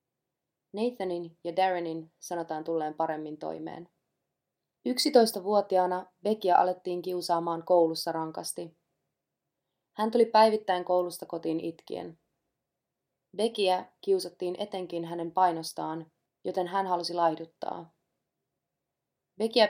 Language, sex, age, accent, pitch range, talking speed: Finnish, female, 20-39, native, 160-185 Hz, 90 wpm